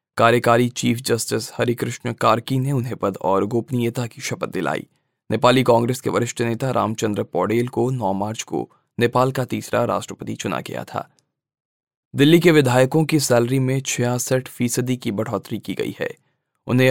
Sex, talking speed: male, 160 wpm